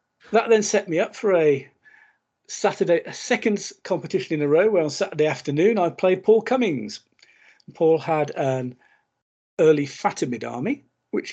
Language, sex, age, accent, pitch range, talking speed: English, male, 50-69, British, 135-185 Hz, 155 wpm